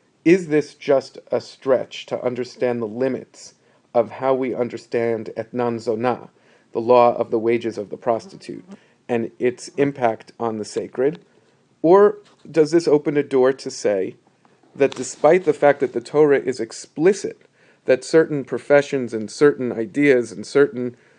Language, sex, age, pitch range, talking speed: English, male, 40-59, 120-140 Hz, 155 wpm